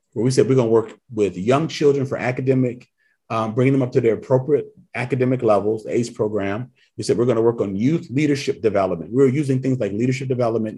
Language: English